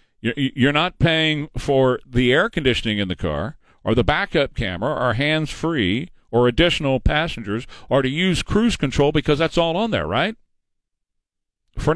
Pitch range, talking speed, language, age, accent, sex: 130-165 Hz, 155 wpm, English, 50-69, American, male